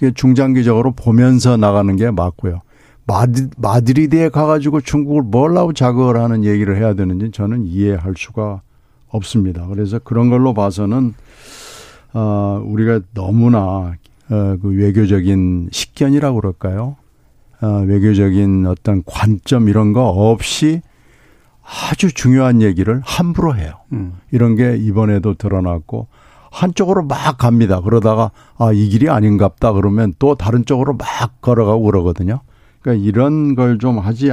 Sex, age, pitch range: male, 60-79, 100-130 Hz